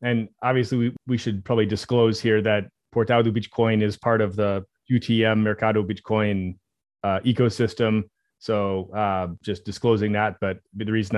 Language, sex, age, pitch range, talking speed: English, male, 30-49, 100-115 Hz, 150 wpm